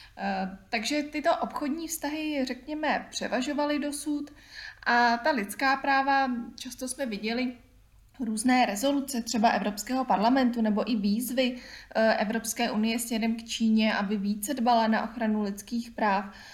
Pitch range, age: 220-250 Hz, 20-39